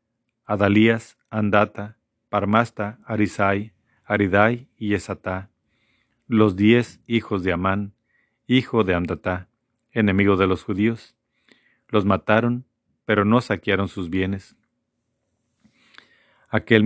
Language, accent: Spanish, Mexican